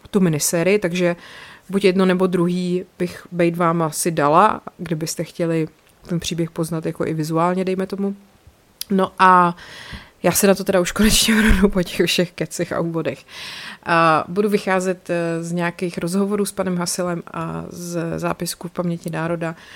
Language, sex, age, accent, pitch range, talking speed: Czech, female, 30-49, native, 170-195 Hz, 160 wpm